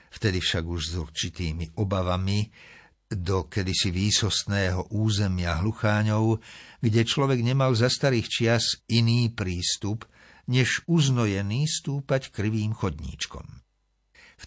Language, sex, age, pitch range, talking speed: Slovak, male, 60-79, 95-120 Hz, 105 wpm